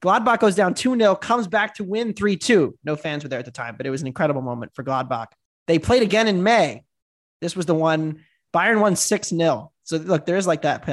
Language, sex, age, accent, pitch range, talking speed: English, male, 20-39, American, 150-210 Hz, 225 wpm